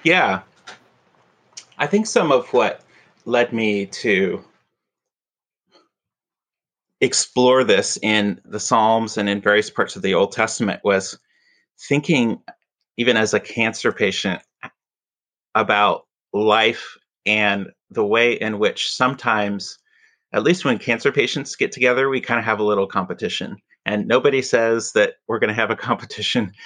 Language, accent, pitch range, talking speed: English, American, 105-130 Hz, 135 wpm